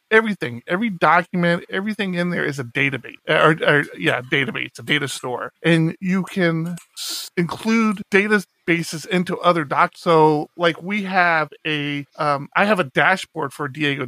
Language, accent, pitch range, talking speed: English, American, 150-180 Hz, 160 wpm